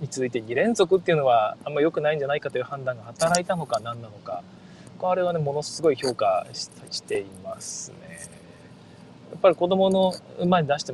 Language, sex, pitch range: Japanese, male, 135-195 Hz